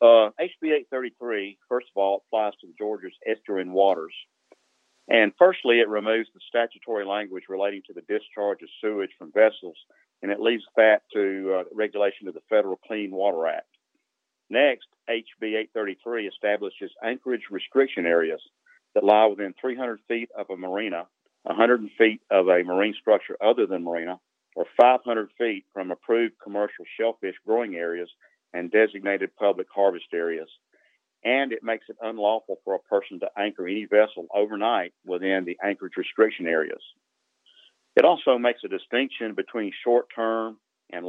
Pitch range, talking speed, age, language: 100-115 Hz, 150 wpm, 50-69, English